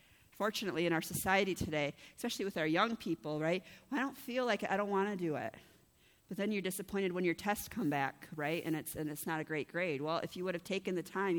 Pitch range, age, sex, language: 155-195 Hz, 40-59, female, English